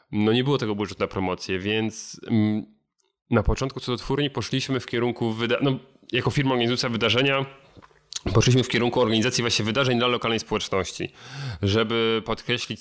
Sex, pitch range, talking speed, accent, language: male, 95-120 Hz, 150 wpm, native, Polish